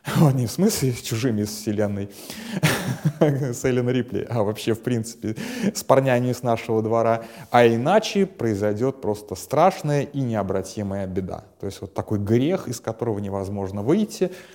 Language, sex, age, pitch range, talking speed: Russian, male, 30-49, 100-130 Hz, 150 wpm